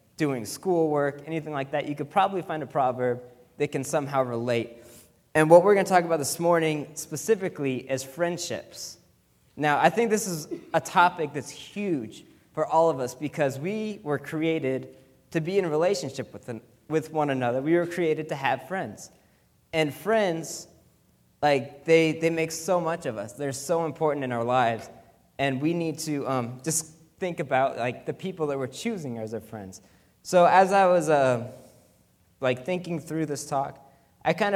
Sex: male